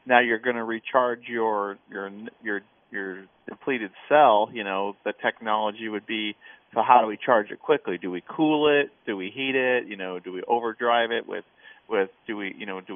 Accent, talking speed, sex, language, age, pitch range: American, 210 wpm, male, English, 30-49, 105-125 Hz